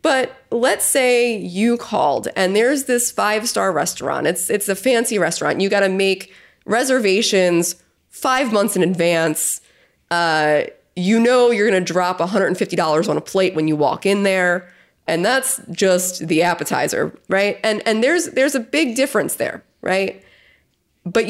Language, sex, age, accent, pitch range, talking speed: English, female, 20-39, American, 185-260 Hz, 160 wpm